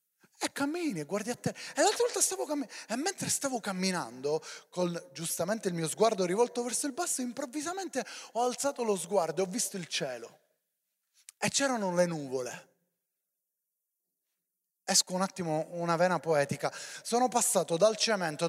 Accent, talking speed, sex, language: native, 155 wpm, male, Italian